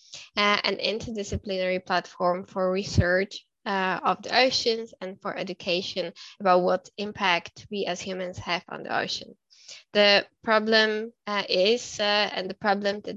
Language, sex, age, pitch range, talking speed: English, female, 10-29, 185-210 Hz, 145 wpm